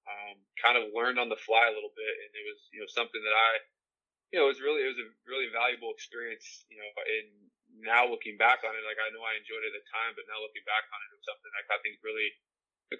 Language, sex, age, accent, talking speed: English, male, 20-39, American, 275 wpm